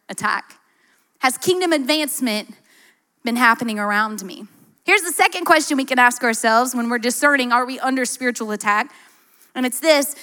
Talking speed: 160 wpm